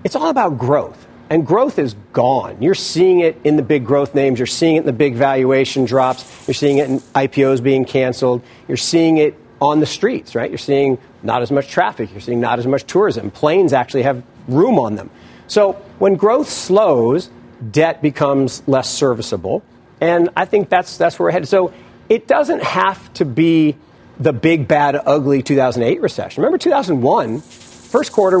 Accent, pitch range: American, 130-165 Hz